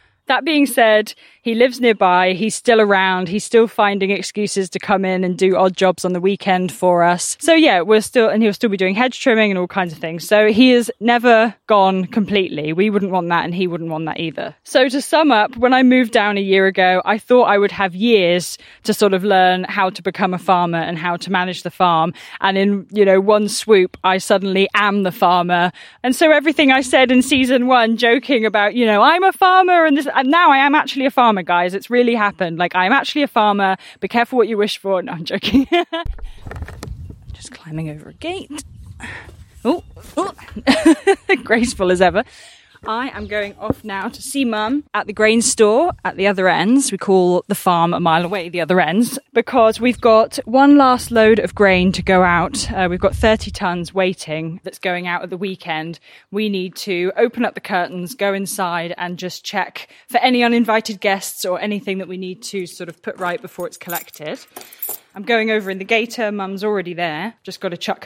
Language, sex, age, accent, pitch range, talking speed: English, female, 10-29, British, 185-235 Hz, 215 wpm